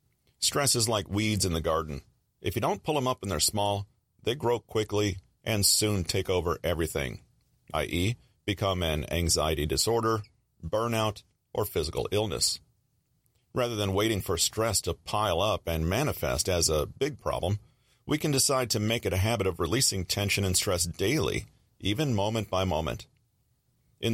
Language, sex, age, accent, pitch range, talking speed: English, male, 40-59, American, 95-120 Hz, 165 wpm